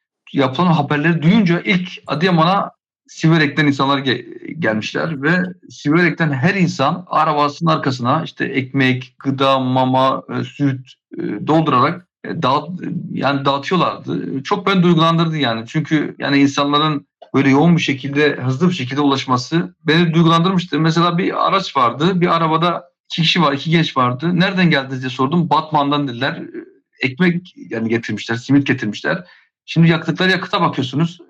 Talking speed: 130 wpm